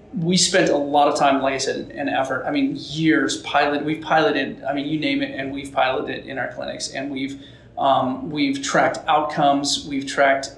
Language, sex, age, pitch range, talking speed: English, male, 30-49, 140-165 Hz, 210 wpm